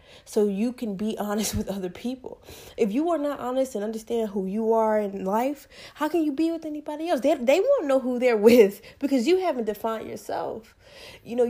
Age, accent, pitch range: 20-39, American, 210-275 Hz